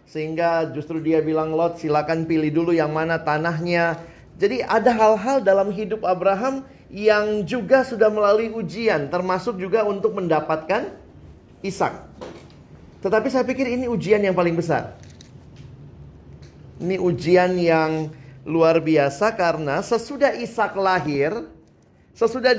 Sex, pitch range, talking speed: male, 150-200 Hz, 120 wpm